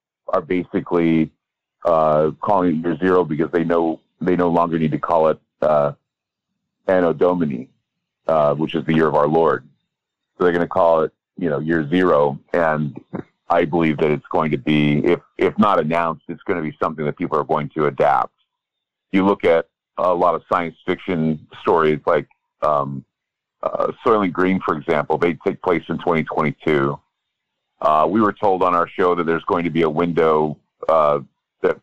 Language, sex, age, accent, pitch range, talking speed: English, male, 40-59, American, 75-85 Hz, 185 wpm